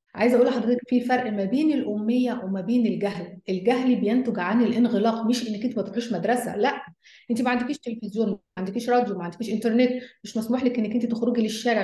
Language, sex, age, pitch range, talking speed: Arabic, female, 30-49, 215-255 Hz, 200 wpm